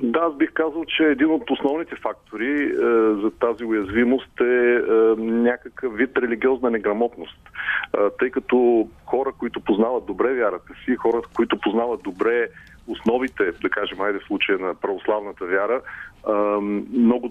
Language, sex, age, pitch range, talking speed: Bulgarian, male, 40-59, 105-140 Hz, 145 wpm